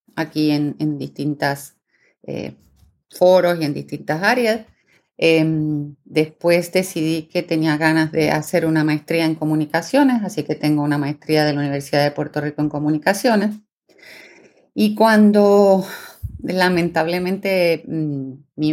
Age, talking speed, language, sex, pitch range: 30-49, 125 wpm, Spanish, female, 150-195 Hz